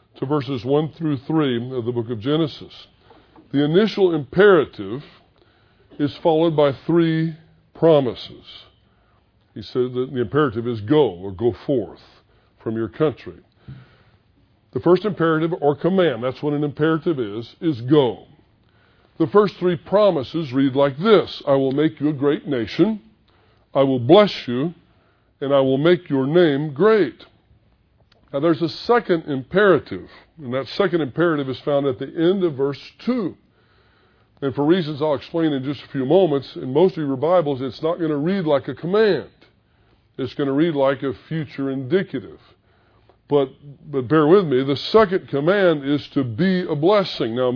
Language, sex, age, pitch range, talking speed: English, female, 50-69, 120-165 Hz, 165 wpm